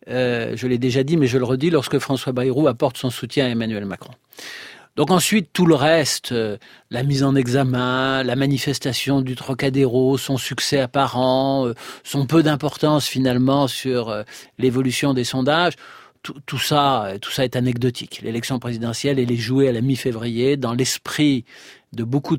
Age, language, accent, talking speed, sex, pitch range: 40-59, French, French, 170 wpm, male, 120-140 Hz